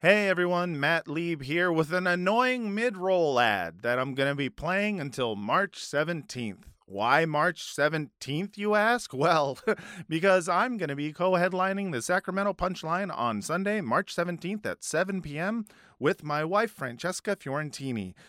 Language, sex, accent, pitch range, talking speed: English, male, American, 135-190 Hz, 150 wpm